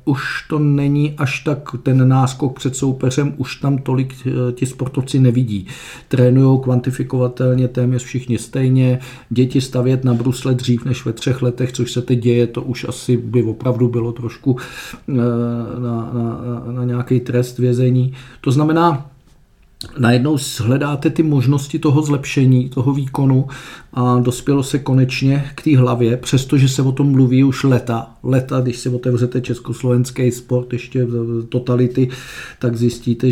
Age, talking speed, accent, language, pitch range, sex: 50-69, 140 wpm, native, Czech, 120-135 Hz, male